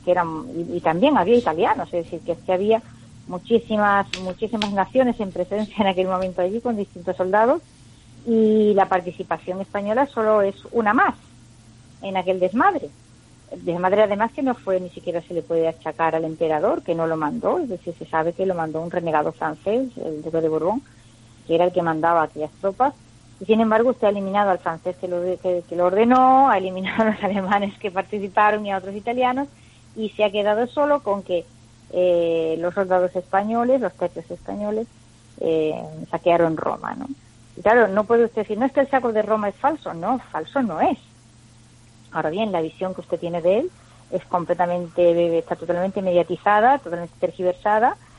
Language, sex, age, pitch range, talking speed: Spanish, female, 30-49, 165-215 Hz, 190 wpm